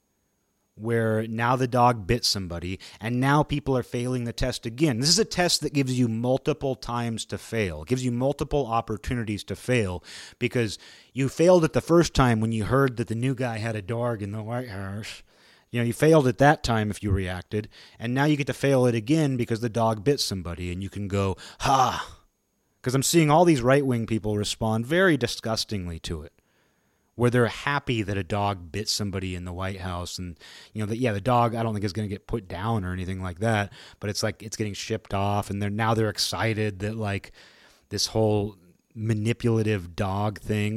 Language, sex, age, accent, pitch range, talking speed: English, male, 30-49, American, 100-125 Hz, 210 wpm